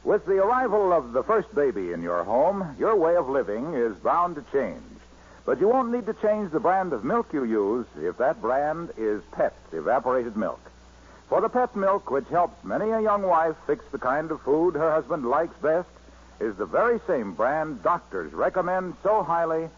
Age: 60-79